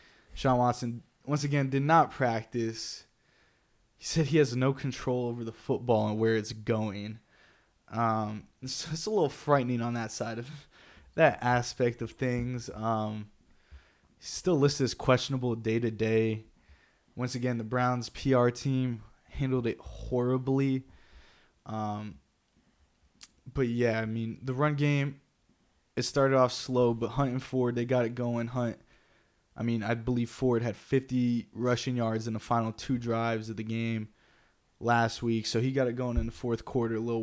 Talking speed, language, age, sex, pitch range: 160 wpm, English, 20-39, male, 115-125 Hz